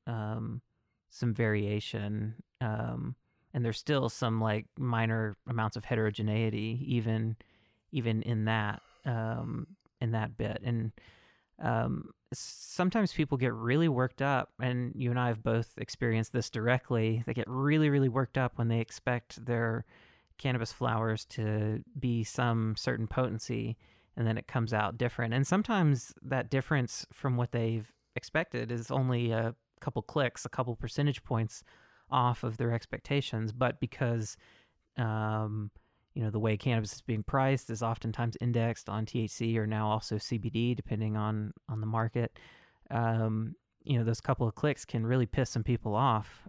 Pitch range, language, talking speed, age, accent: 110-130 Hz, English, 155 wpm, 30-49, American